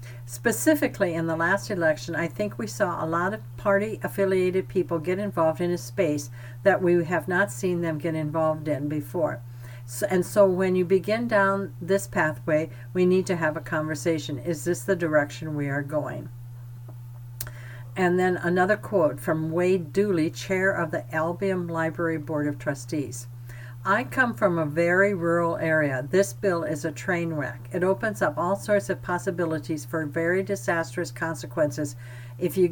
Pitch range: 125-180 Hz